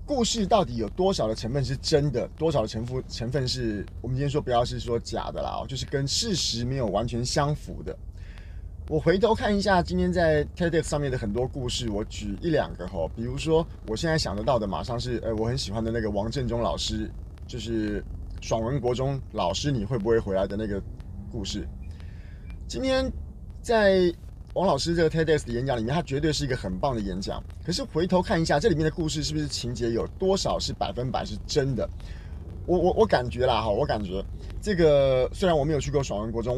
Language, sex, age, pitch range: Chinese, male, 30-49, 100-150 Hz